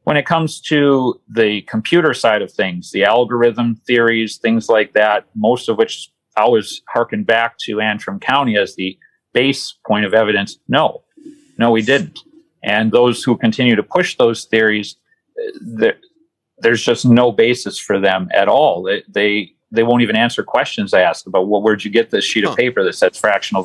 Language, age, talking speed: English, 40-59, 180 wpm